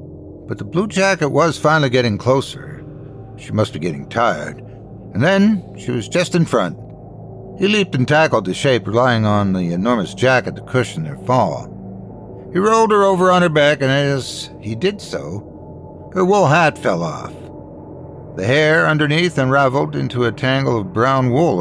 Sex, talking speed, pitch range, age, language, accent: male, 170 wpm, 110-165 Hz, 60-79, English, American